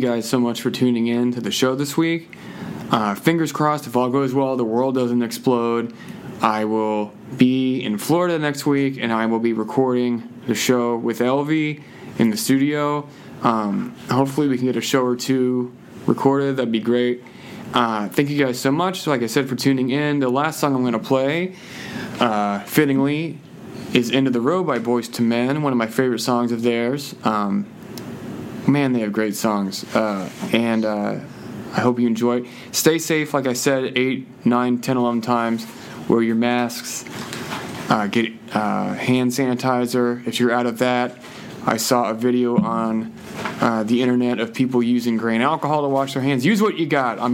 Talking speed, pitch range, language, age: 190 wpm, 115-135 Hz, English, 20-39